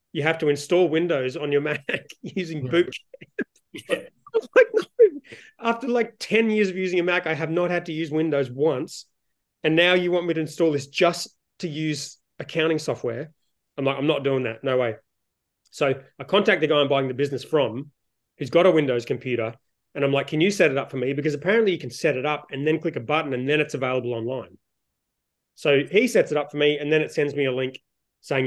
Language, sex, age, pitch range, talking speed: English, male, 30-49, 135-175 Hz, 220 wpm